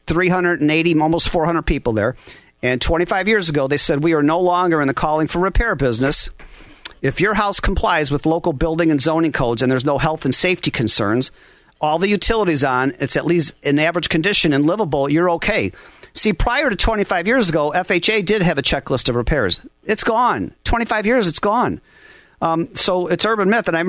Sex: male